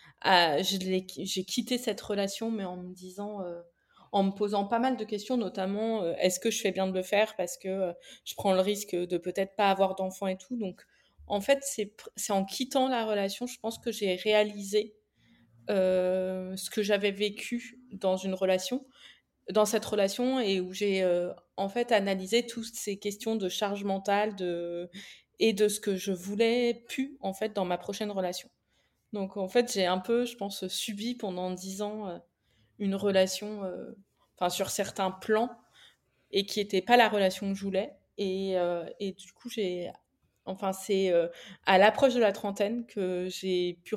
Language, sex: French, female